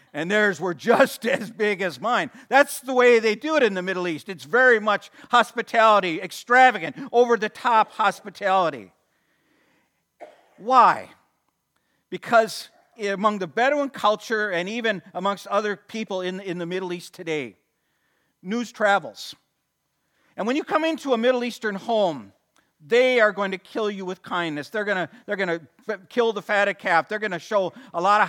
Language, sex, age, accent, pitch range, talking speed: English, male, 50-69, American, 185-240 Hz, 165 wpm